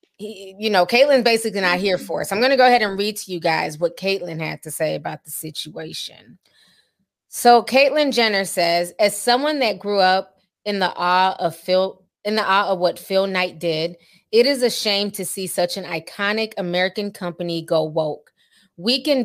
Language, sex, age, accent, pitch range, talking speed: English, female, 20-39, American, 175-215 Hz, 200 wpm